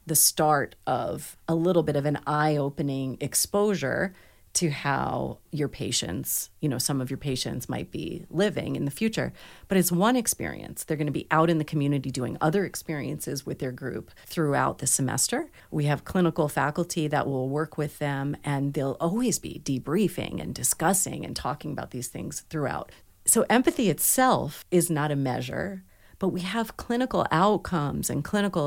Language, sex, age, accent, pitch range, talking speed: English, female, 40-59, American, 140-190 Hz, 170 wpm